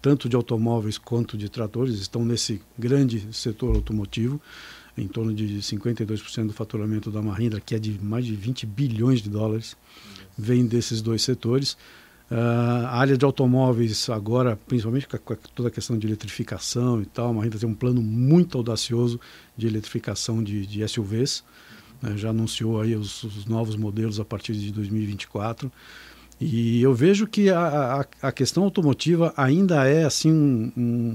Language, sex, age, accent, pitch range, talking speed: Portuguese, male, 60-79, Brazilian, 110-145 Hz, 160 wpm